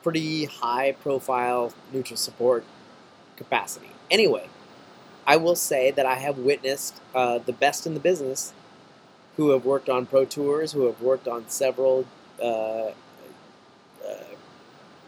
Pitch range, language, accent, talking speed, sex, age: 125-155 Hz, English, American, 125 wpm, male, 30-49